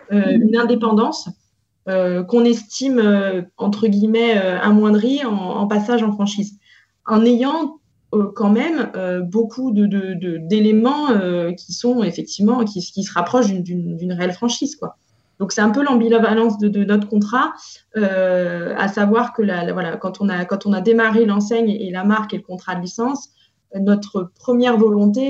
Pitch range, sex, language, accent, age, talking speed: 195-230 Hz, female, French, French, 20-39, 180 wpm